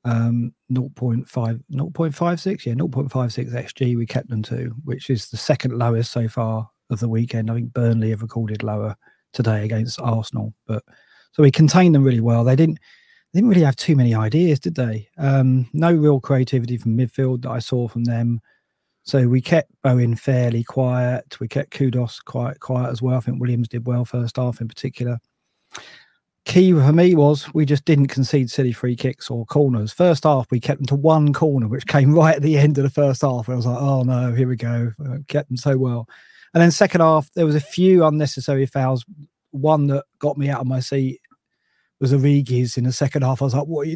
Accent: British